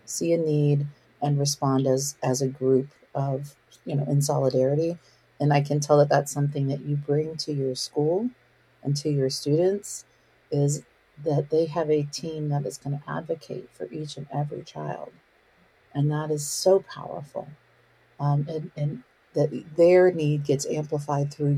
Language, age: English, 40-59